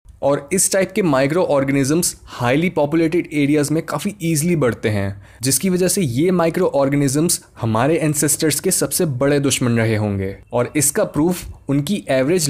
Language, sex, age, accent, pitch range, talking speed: Hindi, male, 20-39, native, 135-175 Hz, 160 wpm